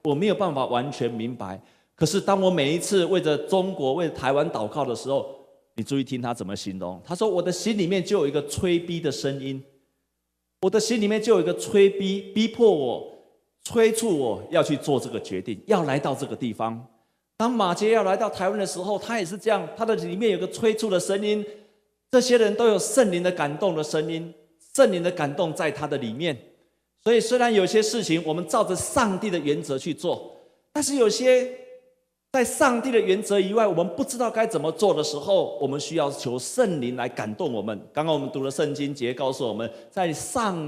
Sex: male